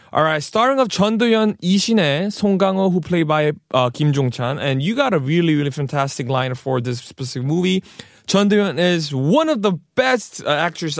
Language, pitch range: Korean, 140-190 Hz